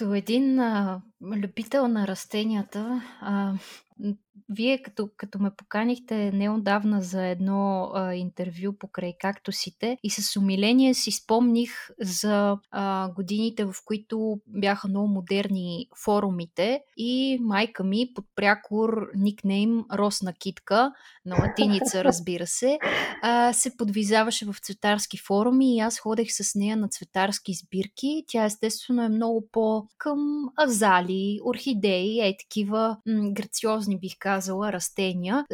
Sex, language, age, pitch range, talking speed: female, Bulgarian, 20-39, 200-240 Hz, 120 wpm